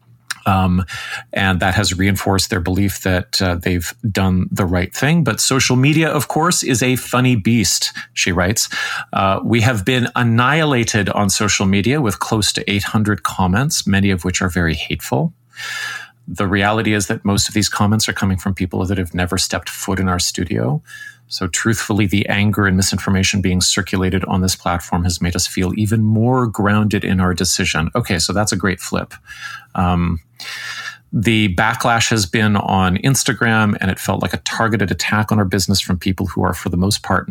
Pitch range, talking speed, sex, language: 95-110 Hz, 185 wpm, male, English